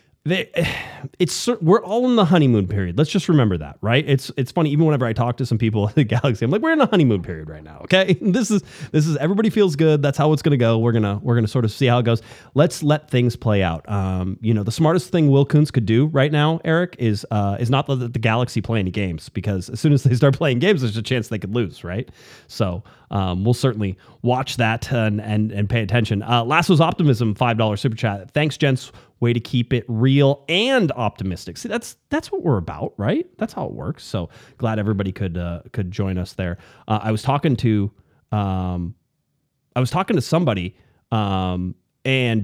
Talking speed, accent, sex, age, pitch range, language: 230 wpm, American, male, 30-49, 105-145 Hz, English